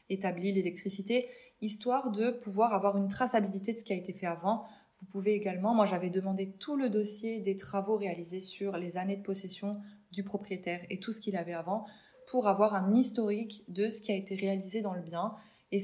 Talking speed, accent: 205 wpm, French